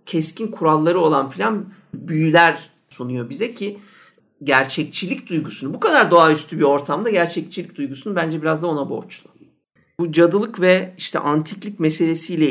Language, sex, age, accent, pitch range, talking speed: Turkish, male, 50-69, native, 140-200 Hz, 135 wpm